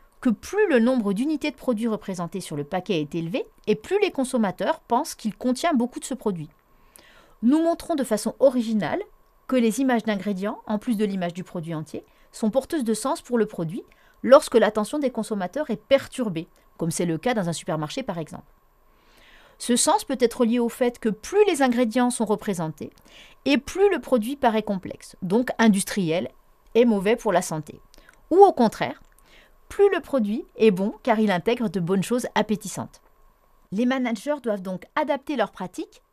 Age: 40-59